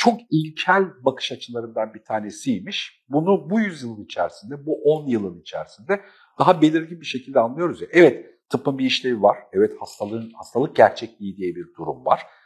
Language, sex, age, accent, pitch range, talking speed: Turkish, male, 50-69, native, 120-200 Hz, 160 wpm